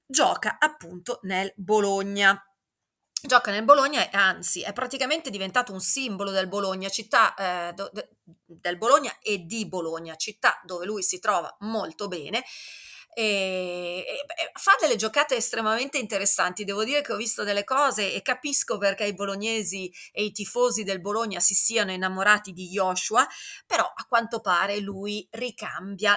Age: 30-49